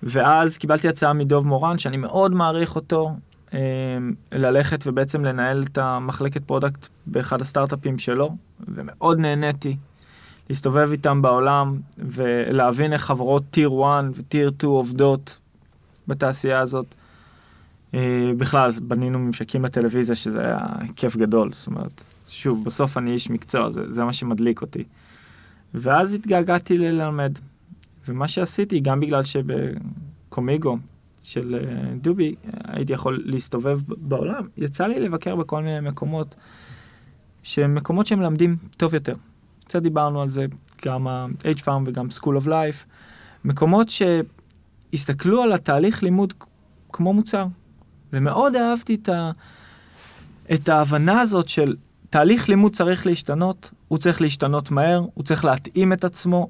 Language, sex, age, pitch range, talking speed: Hebrew, male, 20-39, 125-165 Hz, 125 wpm